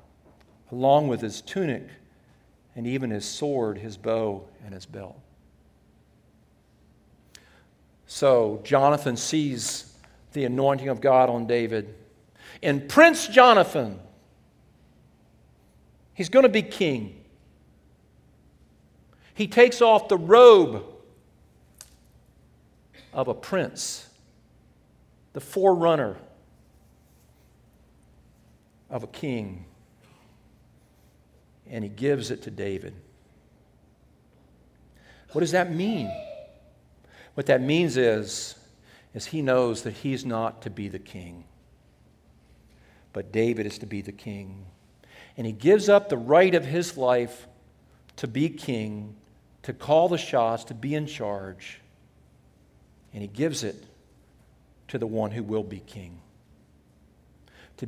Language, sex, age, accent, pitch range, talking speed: English, male, 50-69, American, 90-140 Hz, 110 wpm